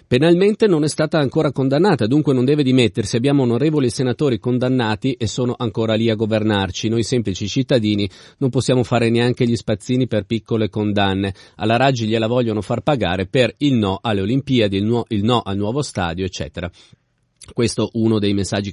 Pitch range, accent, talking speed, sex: 100-130 Hz, native, 170 wpm, male